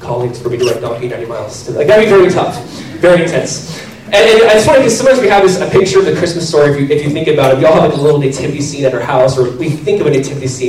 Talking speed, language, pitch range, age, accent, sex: 310 wpm, English, 130-190 Hz, 20-39, American, male